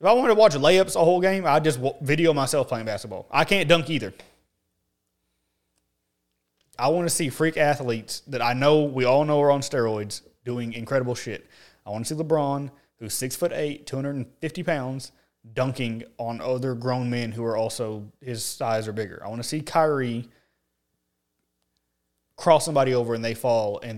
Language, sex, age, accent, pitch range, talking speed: English, male, 20-39, American, 105-165 Hz, 175 wpm